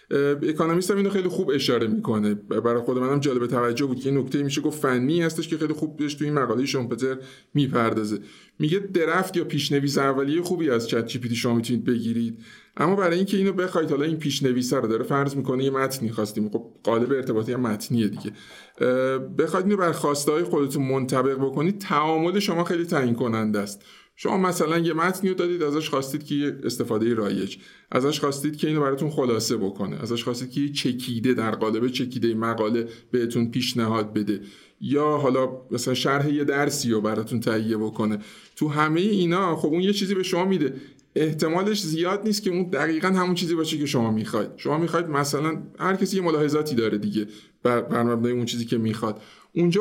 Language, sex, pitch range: Persian, male, 120-165 Hz